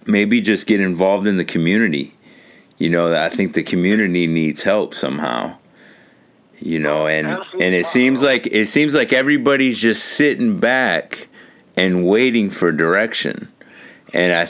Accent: American